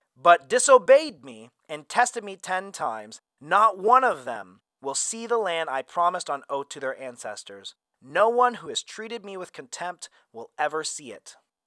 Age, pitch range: 30-49, 170-245 Hz